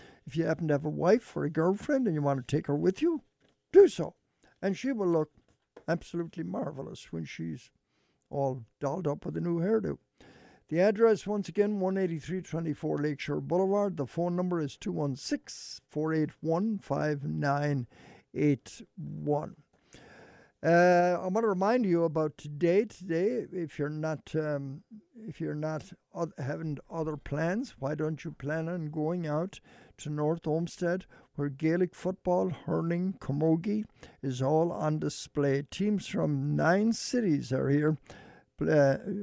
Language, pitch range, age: English, 145-180 Hz, 60-79